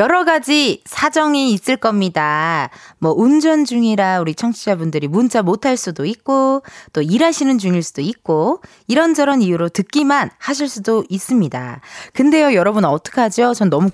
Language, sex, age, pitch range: Korean, female, 20-39, 175-275 Hz